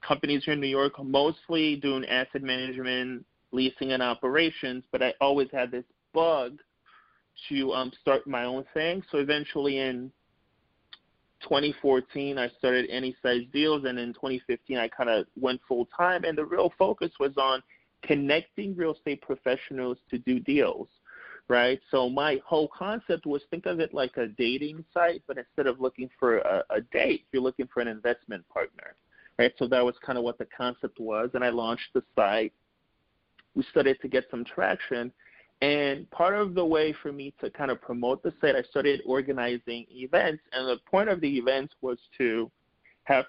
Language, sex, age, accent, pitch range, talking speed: English, male, 30-49, American, 125-150 Hz, 175 wpm